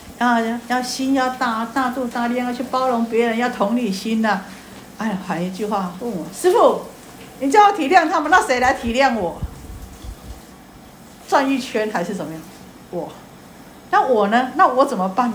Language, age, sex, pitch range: Chinese, 50-69, female, 200-265 Hz